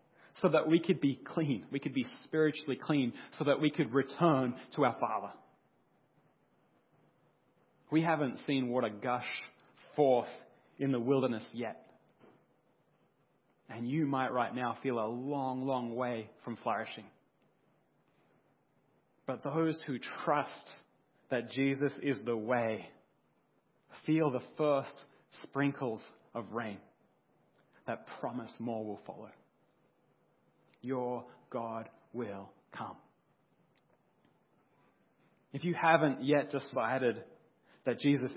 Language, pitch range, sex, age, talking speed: English, 125-150 Hz, male, 30-49, 115 wpm